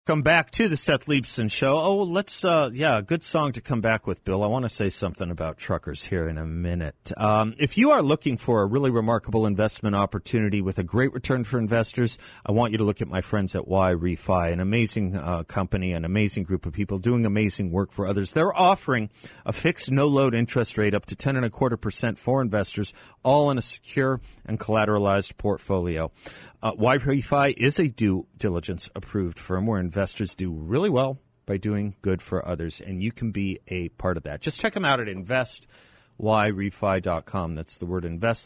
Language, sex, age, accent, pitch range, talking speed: English, male, 40-59, American, 95-130 Hz, 205 wpm